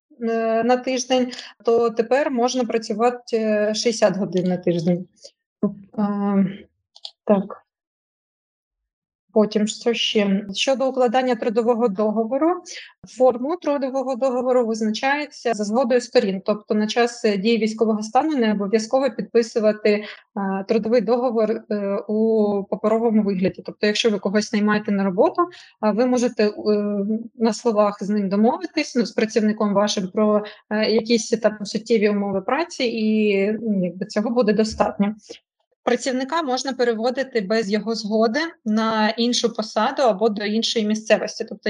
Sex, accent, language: female, native, Ukrainian